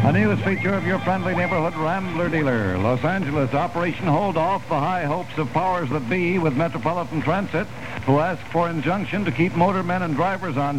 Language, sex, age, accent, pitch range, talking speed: English, male, 70-89, American, 145-185 Hz, 195 wpm